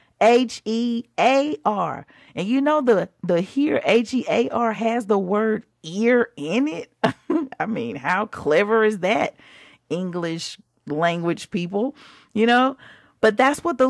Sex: female